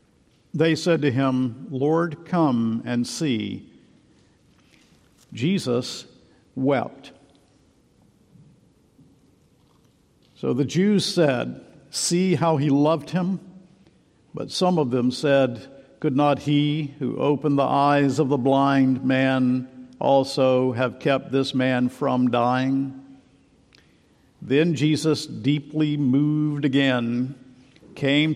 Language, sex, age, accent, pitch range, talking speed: English, male, 50-69, American, 130-160 Hz, 100 wpm